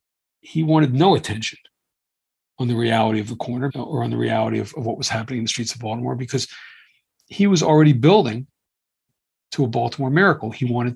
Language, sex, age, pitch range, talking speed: English, male, 40-59, 120-150 Hz, 190 wpm